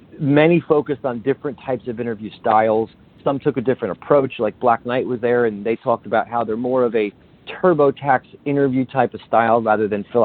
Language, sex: English, male